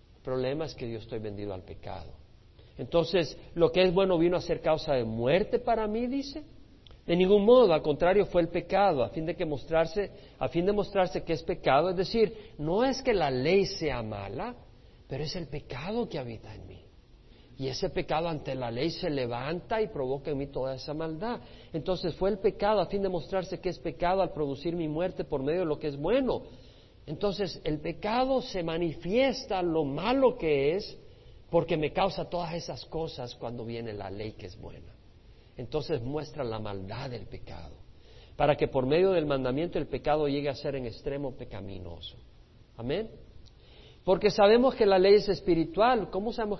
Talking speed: 190 wpm